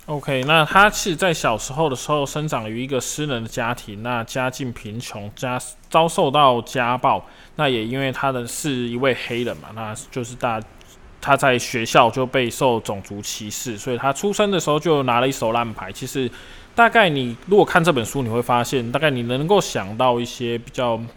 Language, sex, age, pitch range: Chinese, male, 20-39, 115-140 Hz